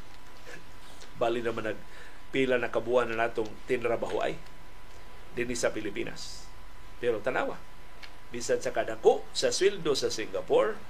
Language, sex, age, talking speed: Filipino, male, 50-69, 110 wpm